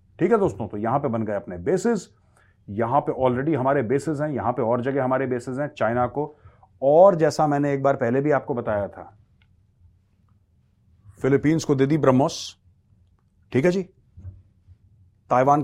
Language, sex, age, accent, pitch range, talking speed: Hindi, male, 30-49, native, 100-150 Hz, 170 wpm